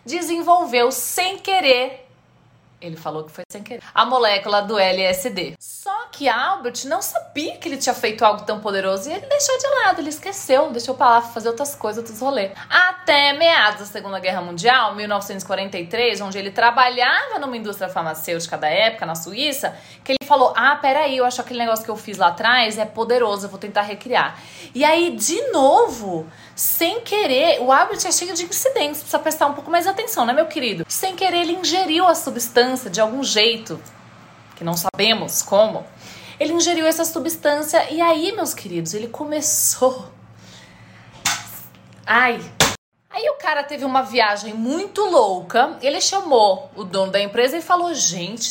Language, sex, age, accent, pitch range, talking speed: Portuguese, female, 20-39, Brazilian, 210-330 Hz, 170 wpm